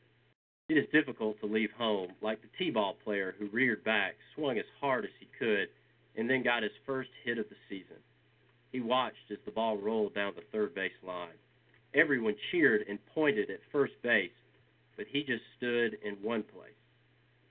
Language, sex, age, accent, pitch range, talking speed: English, male, 40-59, American, 100-120 Hz, 180 wpm